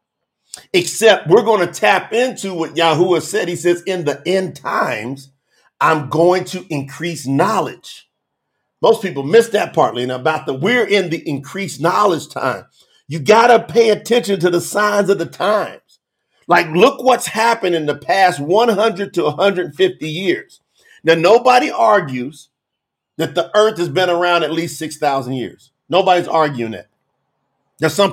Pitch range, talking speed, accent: 155-200 Hz, 160 wpm, American